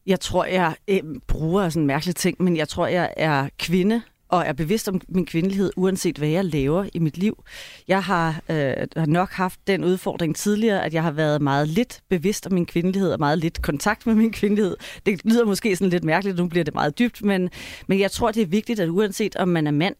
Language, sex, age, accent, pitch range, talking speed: Danish, female, 30-49, native, 165-205 Hz, 225 wpm